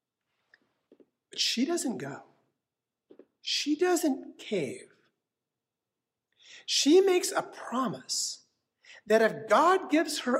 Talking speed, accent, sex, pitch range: 90 wpm, American, male, 175-240 Hz